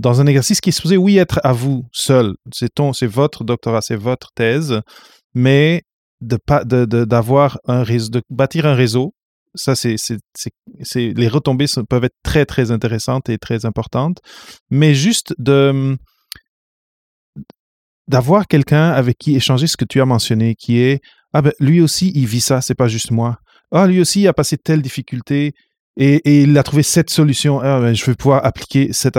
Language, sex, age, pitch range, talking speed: French, male, 30-49, 120-145 Hz, 195 wpm